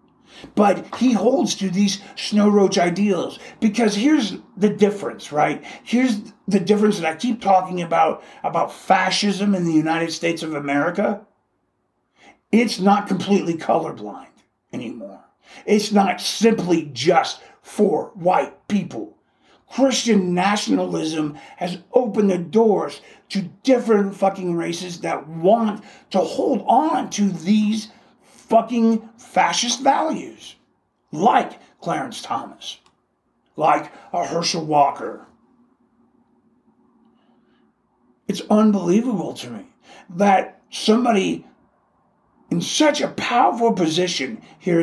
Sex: male